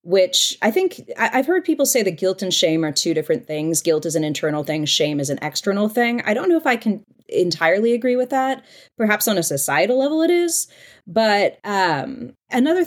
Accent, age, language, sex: American, 30-49, English, female